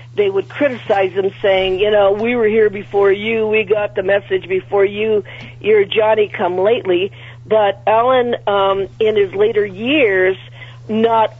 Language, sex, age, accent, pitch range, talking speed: English, female, 50-69, American, 180-230 Hz, 145 wpm